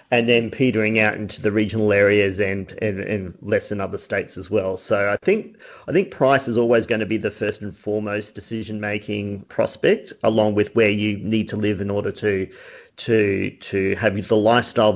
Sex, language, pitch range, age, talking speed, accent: male, English, 105-130 Hz, 40-59, 200 wpm, Australian